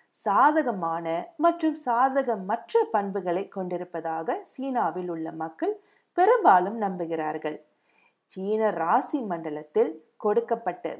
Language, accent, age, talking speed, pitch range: Tamil, native, 50-69, 70 wpm, 170-245 Hz